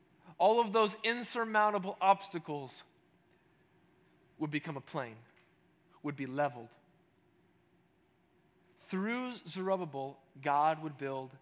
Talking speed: 90 wpm